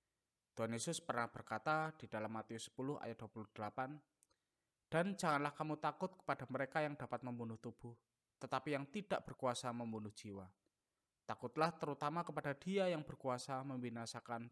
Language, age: Indonesian, 20-39